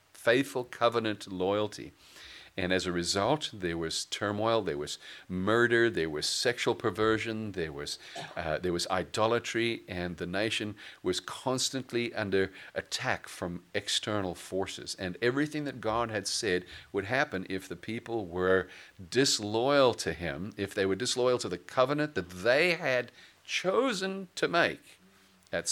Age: 40-59